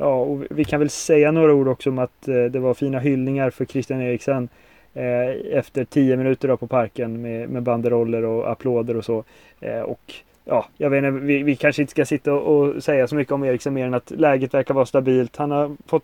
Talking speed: 230 wpm